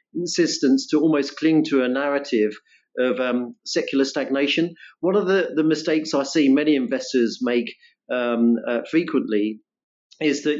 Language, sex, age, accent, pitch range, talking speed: English, male, 40-59, British, 125-150 Hz, 145 wpm